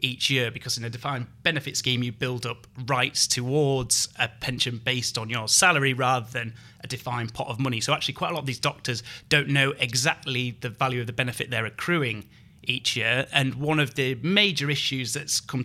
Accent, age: British, 30-49